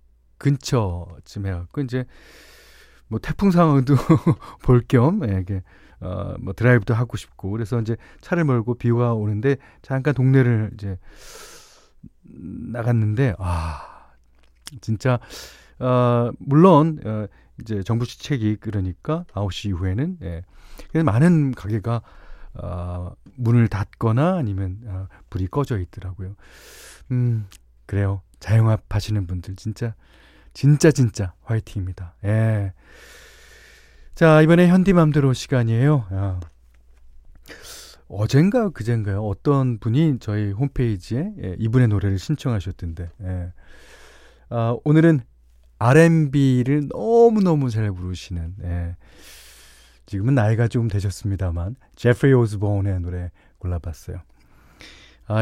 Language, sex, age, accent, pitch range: Korean, male, 40-59, native, 90-130 Hz